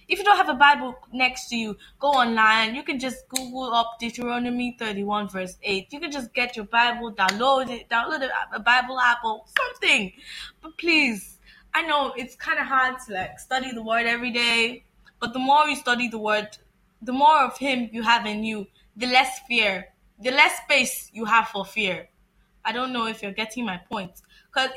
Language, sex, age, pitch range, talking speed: English, female, 10-29, 205-260 Hz, 200 wpm